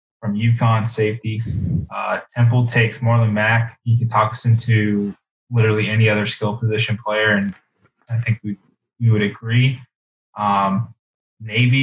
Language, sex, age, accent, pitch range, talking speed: English, male, 20-39, American, 105-115 Hz, 135 wpm